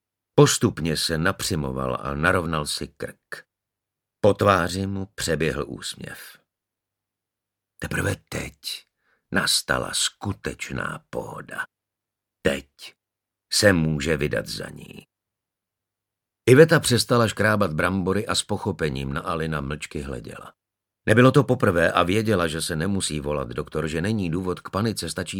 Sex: male